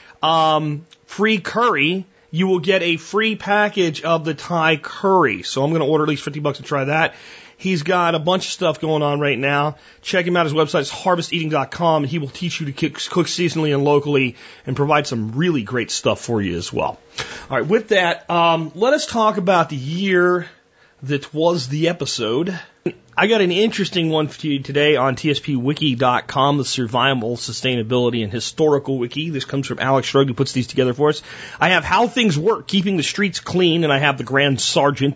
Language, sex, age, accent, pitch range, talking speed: English, male, 30-49, American, 125-170 Hz, 200 wpm